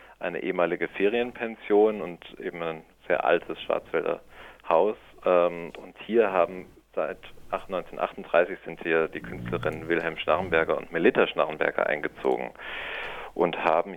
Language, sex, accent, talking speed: German, male, German, 115 wpm